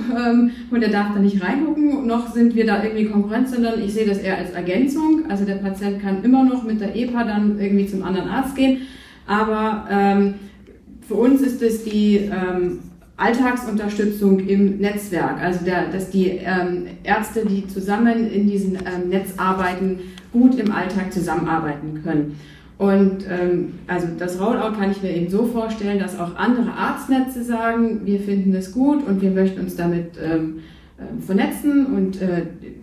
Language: German